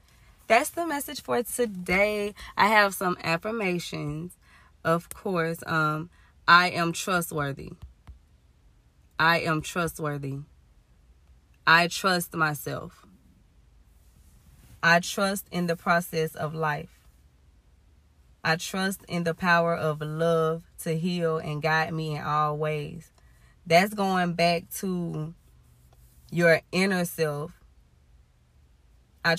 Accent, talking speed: American, 105 wpm